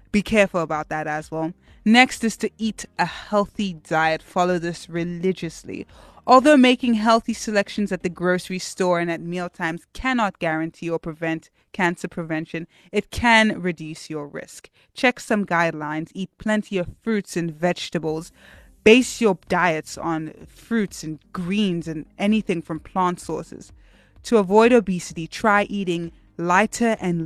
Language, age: English, 20-39